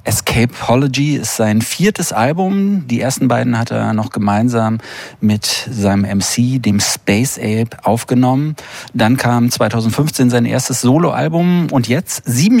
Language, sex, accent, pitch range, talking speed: German, male, German, 115-145 Hz, 130 wpm